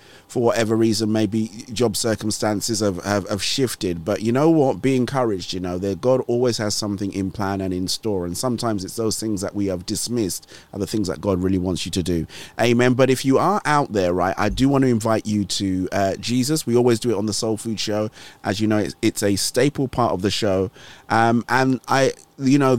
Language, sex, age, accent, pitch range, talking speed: English, male, 30-49, British, 100-115 Hz, 230 wpm